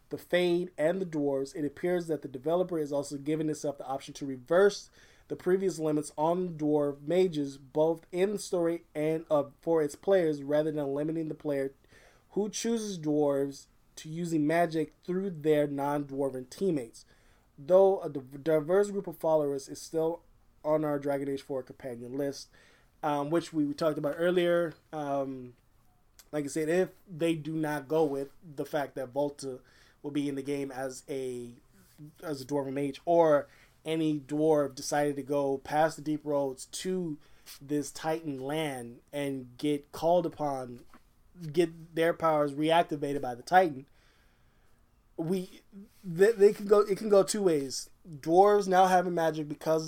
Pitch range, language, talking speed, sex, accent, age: 140-170 Hz, English, 160 wpm, male, American, 20-39